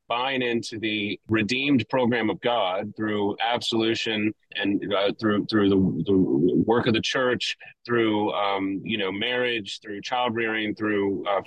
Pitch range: 110-125 Hz